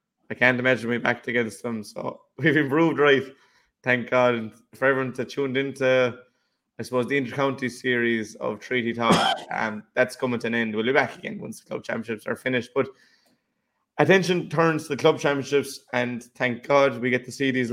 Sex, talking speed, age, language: male, 195 wpm, 20-39, English